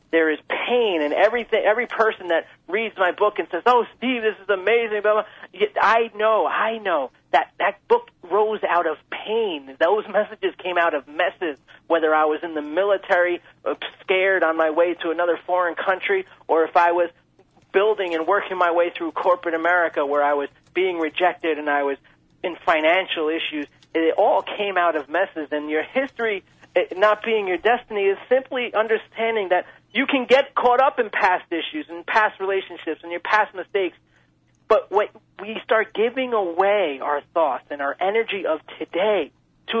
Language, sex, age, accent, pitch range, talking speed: English, male, 40-59, American, 160-220 Hz, 185 wpm